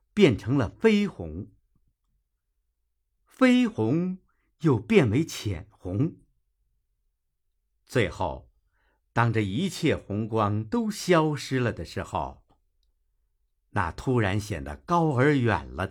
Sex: male